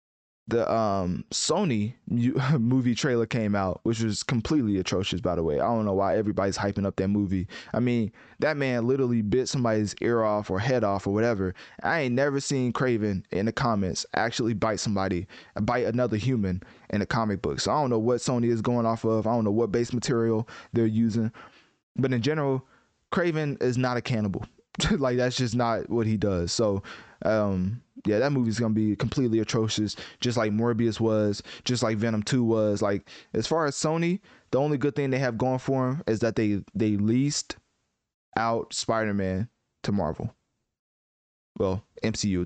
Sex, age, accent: male, 20-39, American